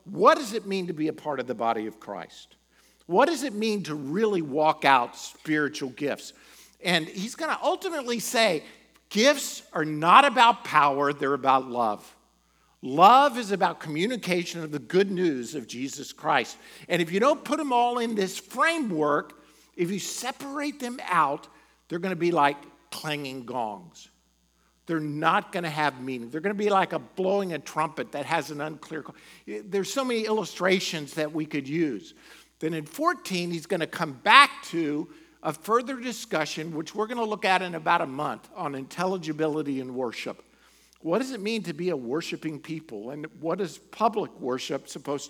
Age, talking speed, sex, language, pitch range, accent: 50-69, 185 wpm, male, English, 150-215 Hz, American